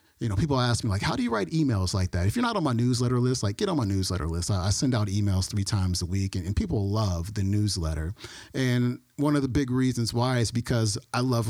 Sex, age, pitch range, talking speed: male, 30-49, 100-130 Hz, 270 wpm